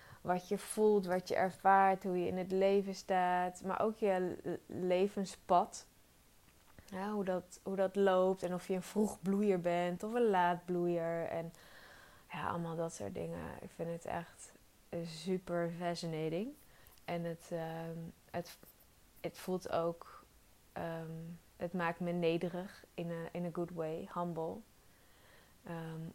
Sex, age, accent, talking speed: female, 20-39, Dutch, 150 wpm